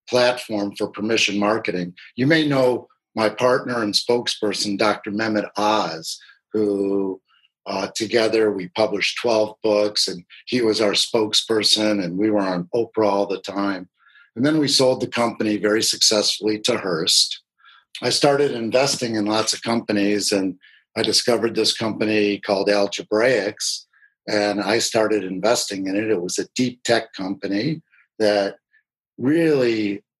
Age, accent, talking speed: 50-69, American, 145 wpm